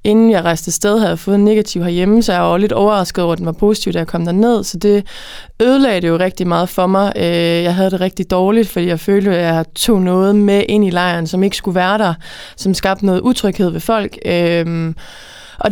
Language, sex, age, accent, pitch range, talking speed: Danish, female, 20-39, native, 175-210 Hz, 235 wpm